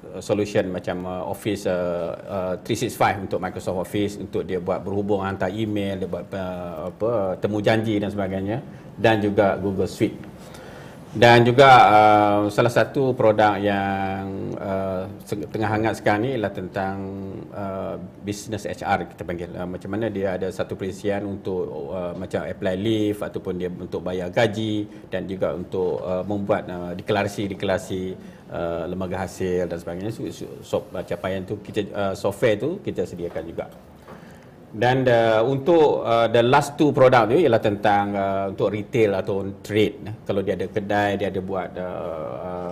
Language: Malay